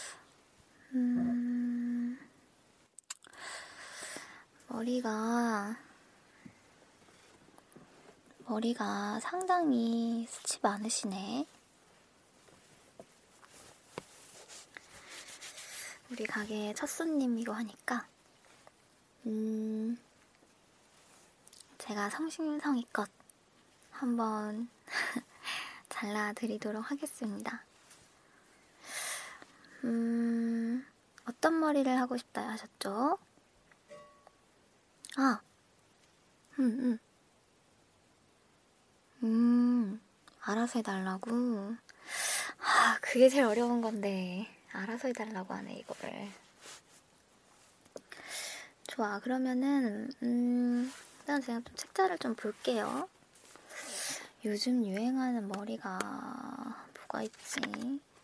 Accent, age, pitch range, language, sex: native, 20-39, 220-260 Hz, Korean, male